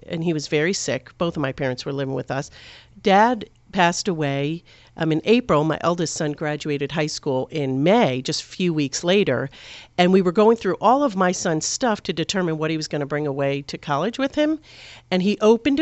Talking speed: 220 wpm